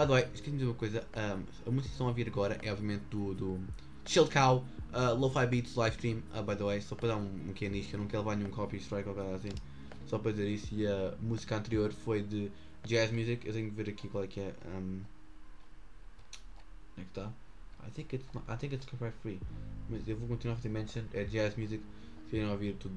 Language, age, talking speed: English, 20-39, 240 wpm